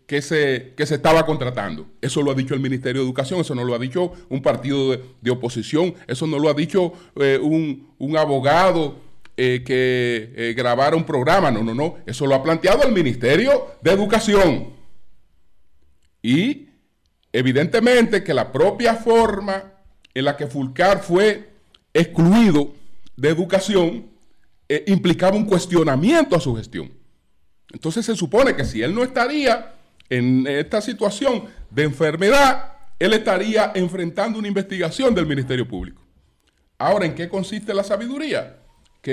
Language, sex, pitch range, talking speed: Spanish, male, 135-210 Hz, 150 wpm